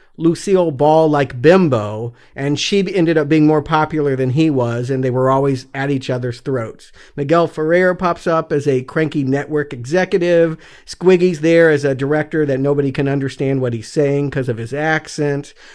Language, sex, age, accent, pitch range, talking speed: English, male, 50-69, American, 130-160 Hz, 180 wpm